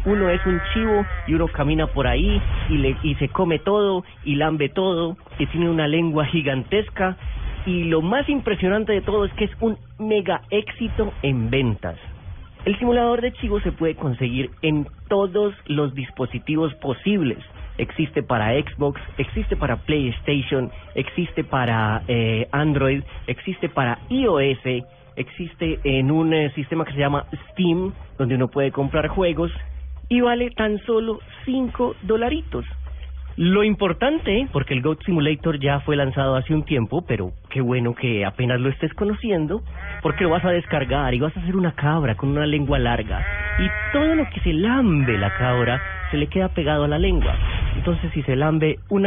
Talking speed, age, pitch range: 165 wpm, 30-49, 125-185 Hz